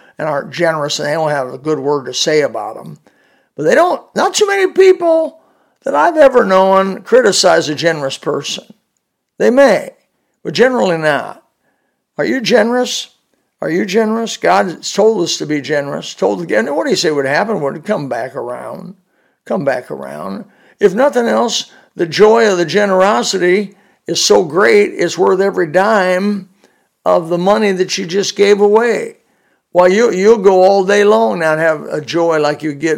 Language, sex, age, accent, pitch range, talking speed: English, male, 60-79, American, 150-205 Hz, 180 wpm